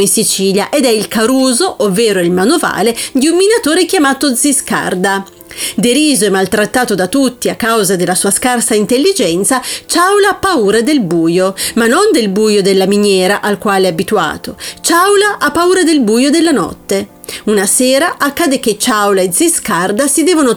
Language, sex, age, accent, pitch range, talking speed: Italian, female, 30-49, native, 200-295 Hz, 165 wpm